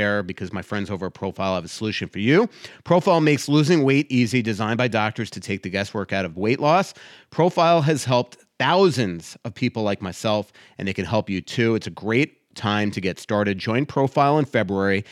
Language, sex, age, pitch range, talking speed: English, male, 30-49, 105-135 Hz, 205 wpm